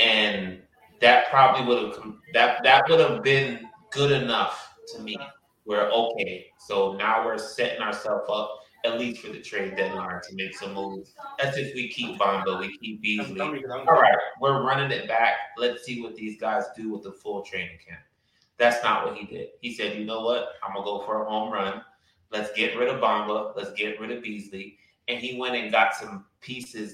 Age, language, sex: 20-39, English, male